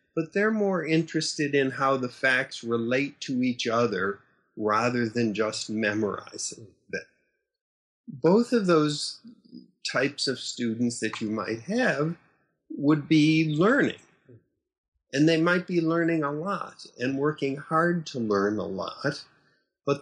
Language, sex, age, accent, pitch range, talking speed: English, male, 50-69, American, 120-160 Hz, 135 wpm